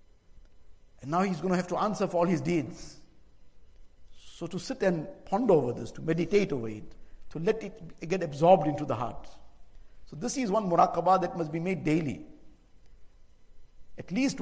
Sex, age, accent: male, 60-79, Indian